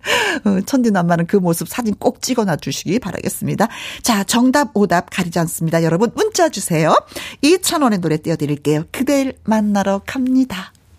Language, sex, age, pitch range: Korean, female, 40-59, 180-280 Hz